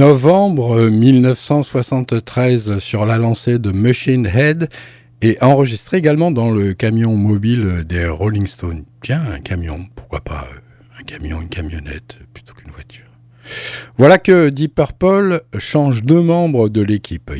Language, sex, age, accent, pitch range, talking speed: French, male, 60-79, French, 105-140 Hz, 135 wpm